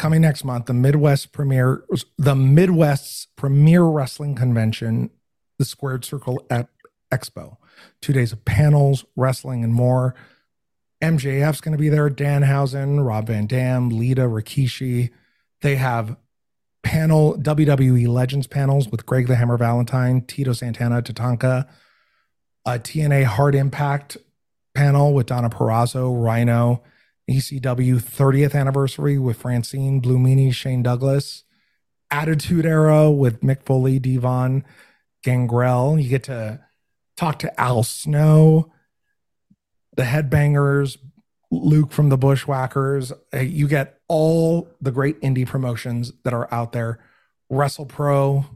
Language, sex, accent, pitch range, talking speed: English, male, American, 125-145 Hz, 120 wpm